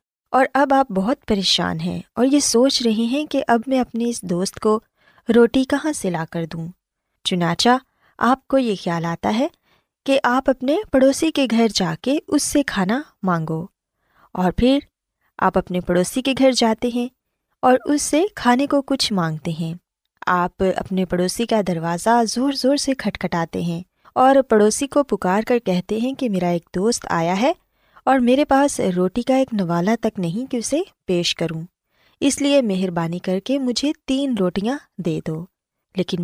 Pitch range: 180-270 Hz